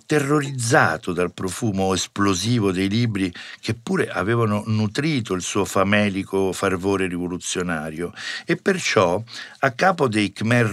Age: 50-69